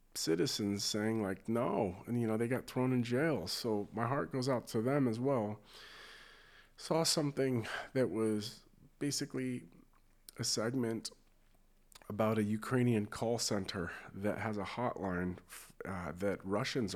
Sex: male